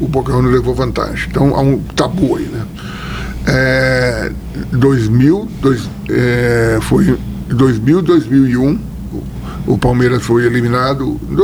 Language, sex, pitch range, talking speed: Portuguese, male, 120-145 Hz, 115 wpm